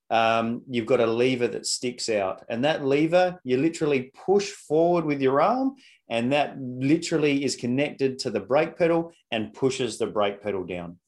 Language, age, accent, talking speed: English, 30-49, Australian, 180 wpm